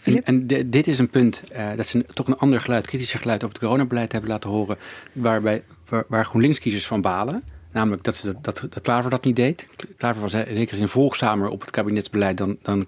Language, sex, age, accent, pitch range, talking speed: Dutch, male, 50-69, Dutch, 110-130 Hz, 225 wpm